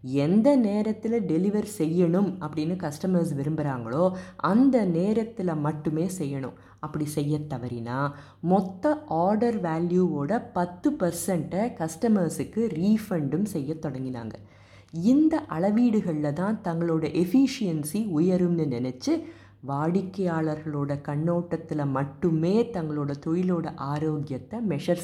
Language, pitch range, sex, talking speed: Tamil, 150-200 Hz, female, 90 wpm